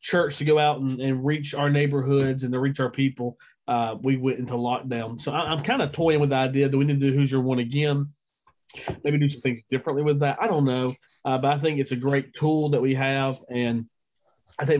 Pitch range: 125-150 Hz